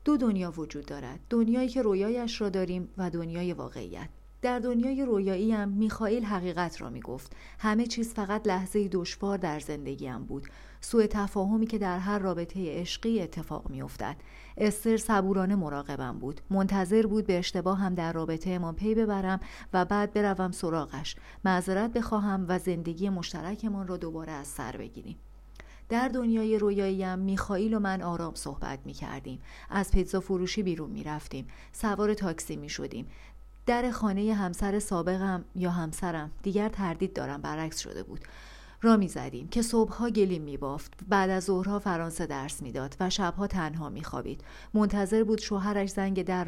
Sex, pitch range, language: female, 170-210 Hz, Persian